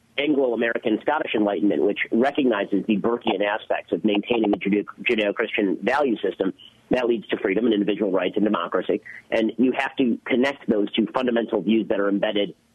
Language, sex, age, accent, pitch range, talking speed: English, male, 40-59, American, 105-125 Hz, 165 wpm